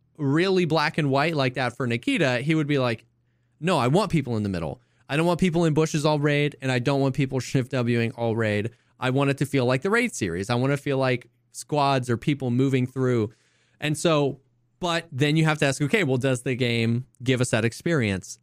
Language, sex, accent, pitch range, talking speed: English, male, American, 120-150 Hz, 240 wpm